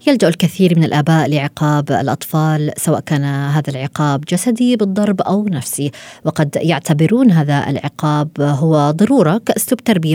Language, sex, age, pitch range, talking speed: Arabic, female, 20-39, 145-195 Hz, 130 wpm